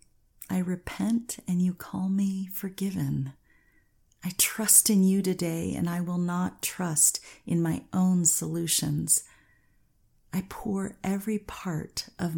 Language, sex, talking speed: English, female, 125 wpm